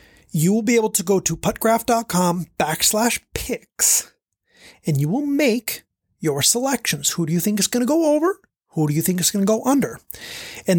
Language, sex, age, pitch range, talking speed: English, male, 30-49, 170-235 Hz, 195 wpm